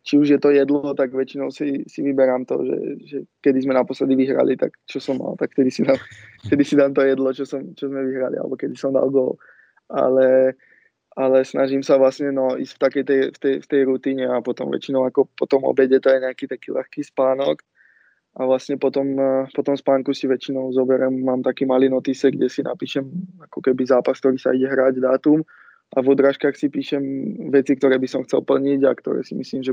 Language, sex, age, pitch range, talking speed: Czech, male, 20-39, 130-135 Hz, 205 wpm